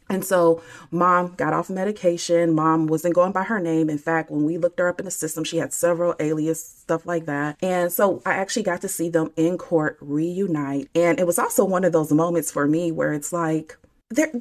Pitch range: 160-195 Hz